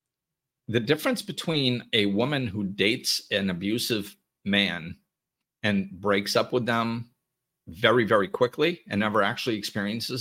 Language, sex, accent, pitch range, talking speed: English, male, American, 100-130 Hz, 130 wpm